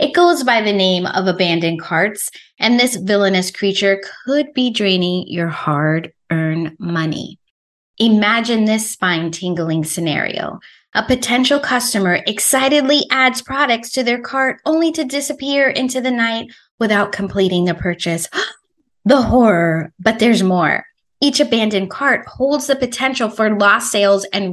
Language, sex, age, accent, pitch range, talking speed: English, female, 20-39, American, 185-250 Hz, 135 wpm